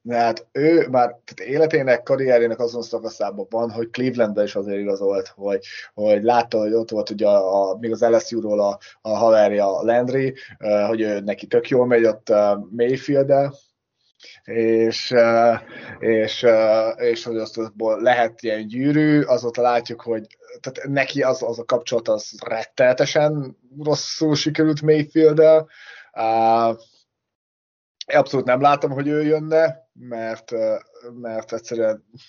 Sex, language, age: male, Hungarian, 20-39